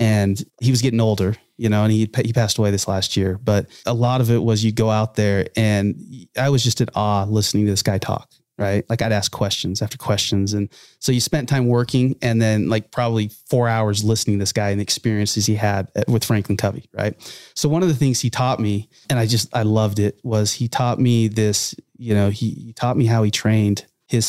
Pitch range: 105-125 Hz